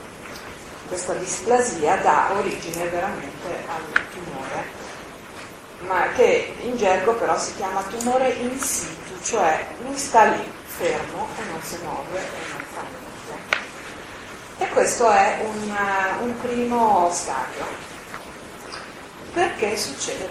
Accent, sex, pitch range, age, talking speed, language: native, female, 175-235 Hz, 40-59, 115 wpm, Italian